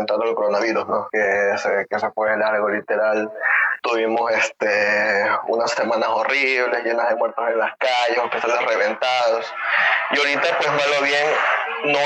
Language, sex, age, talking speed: Spanish, male, 20-39, 155 wpm